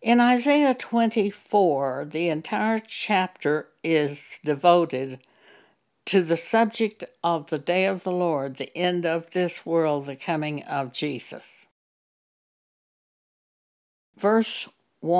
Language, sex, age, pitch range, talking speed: English, female, 60-79, 160-205 Hz, 105 wpm